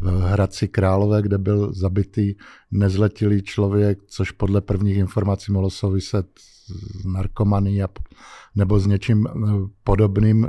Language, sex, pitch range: Czech, male, 100-120 Hz